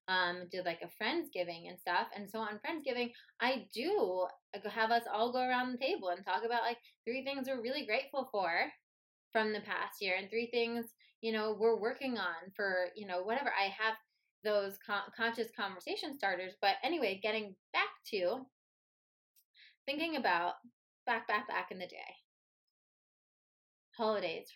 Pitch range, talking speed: 180-230 Hz, 165 wpm